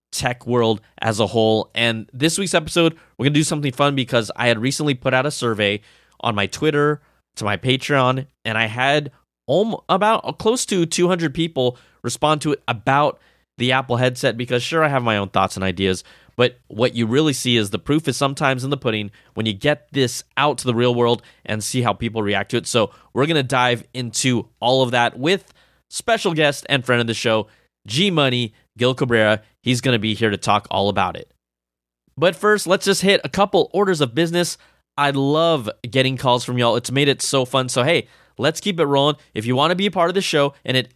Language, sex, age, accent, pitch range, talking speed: English, male, 20-39, American, 115-150 Hz, 225 wpm